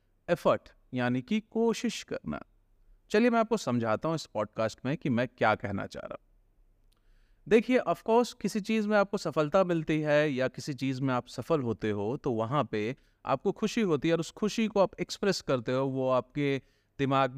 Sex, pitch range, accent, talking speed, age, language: male, 120-195 Hz, native, 190 wpm, 30-49, Hindi